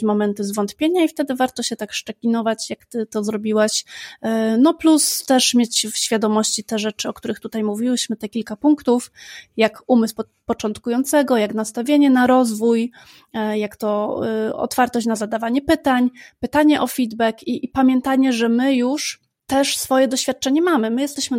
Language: Polish